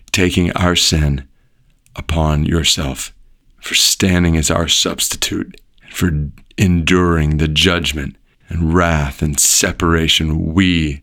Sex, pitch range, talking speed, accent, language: male, 85-120 Hz, 105 wpm, American, English